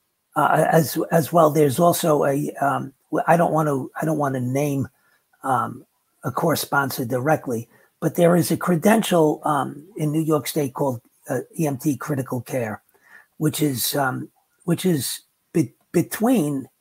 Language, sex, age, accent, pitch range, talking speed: English, male, 50-69, American, 135-165 Hz, 155 wpm